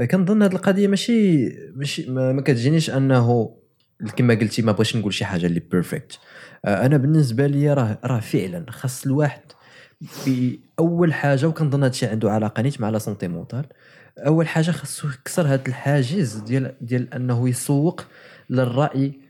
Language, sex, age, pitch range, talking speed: Arabic, male, 20-39, 115-155 Hz, 145 wpm